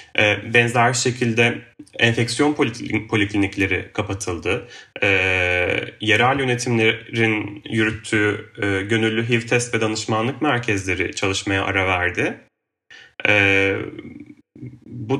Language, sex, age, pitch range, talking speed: Turkish, male, 30-49, 105-125 Hz, 70 wpm